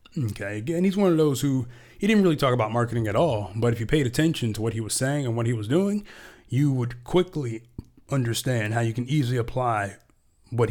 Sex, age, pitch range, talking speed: male, 20-39, 105-125 Hz, 225 wpm